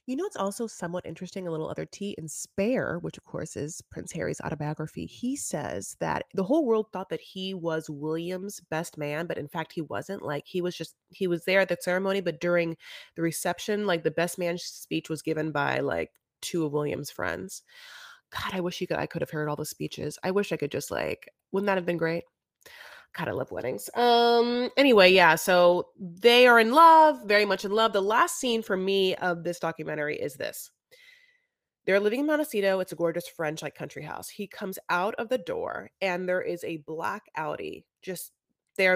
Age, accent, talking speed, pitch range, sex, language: 30-49, American, 210 wpm, 165-215 Hz, female, English